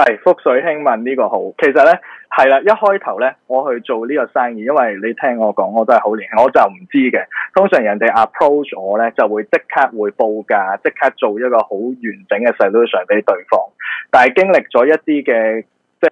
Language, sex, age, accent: Chinese, male, 20-39, native